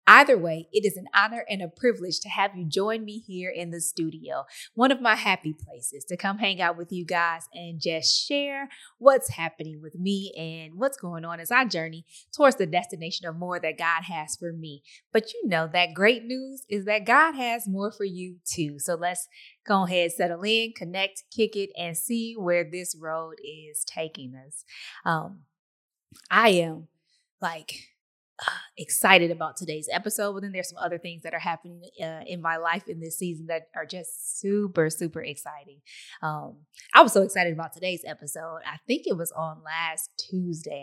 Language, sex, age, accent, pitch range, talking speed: English, female, 20-39, American, 160-205 Hz, 190 wpm